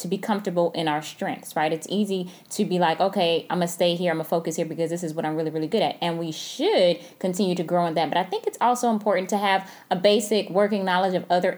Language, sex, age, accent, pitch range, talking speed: English, female, 10-29, American, 165-190 Hz, 280 wpm